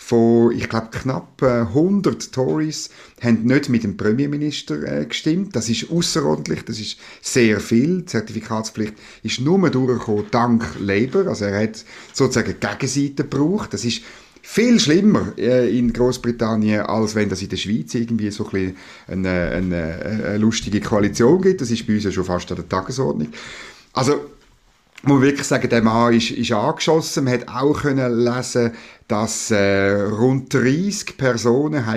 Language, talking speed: German, 160 wpm